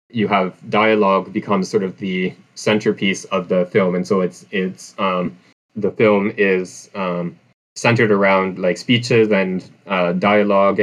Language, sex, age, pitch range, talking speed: English, male, 20-39, 95-110 Hz, 150 wpm